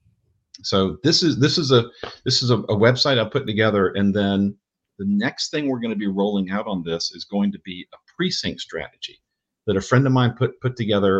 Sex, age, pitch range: male, 50-69, 95-115 Hz